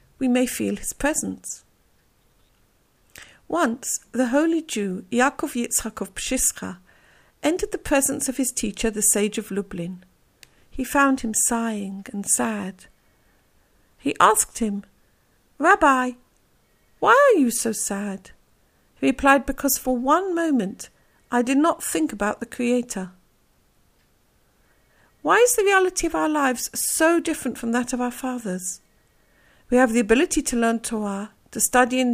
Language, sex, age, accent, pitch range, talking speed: English, female, 50-69, British, 220-290 Hz, 140 wpm